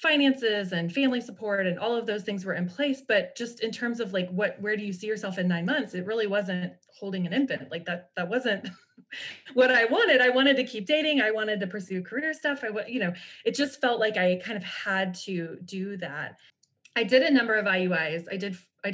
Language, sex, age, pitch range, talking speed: English, female, 20-39, 180-230 Hz, 235 wpm